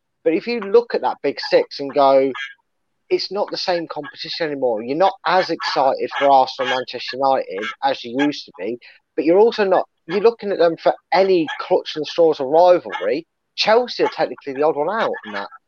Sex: male